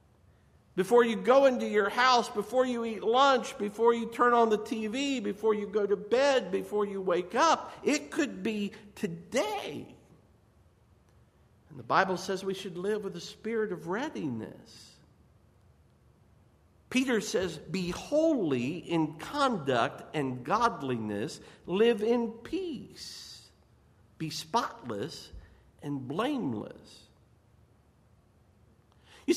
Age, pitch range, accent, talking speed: 50-69, 190-270 Hz, American, 115 wpm